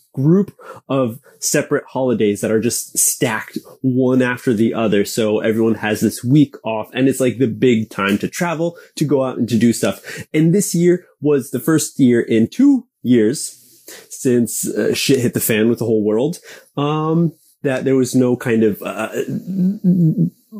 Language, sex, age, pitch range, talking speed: English, male, 20-39, 115-155 Hz, 180 wpm